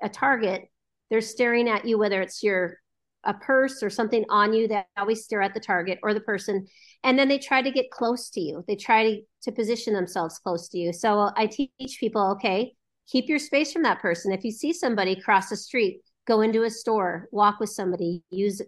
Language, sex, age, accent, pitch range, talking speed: English, female, 40-59, American, 185-235 Hz, 220 wpm